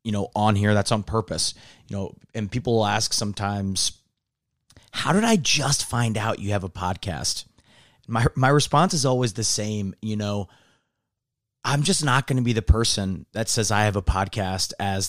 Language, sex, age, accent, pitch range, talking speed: English, male, 30-49, American, 100-115 Hz, 190 wpm